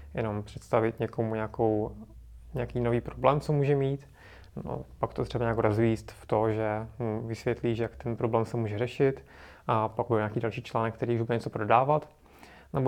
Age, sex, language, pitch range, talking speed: 20-39, male, Czech, 110-130 Hz, 175 wpm